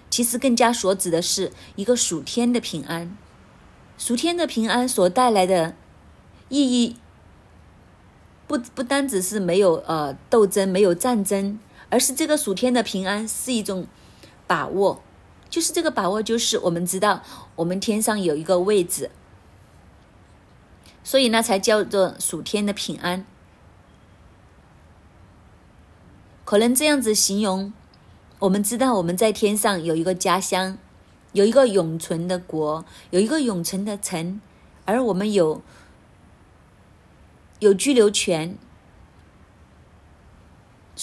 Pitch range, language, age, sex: 165-230 Hz, Chinese, 30-49, female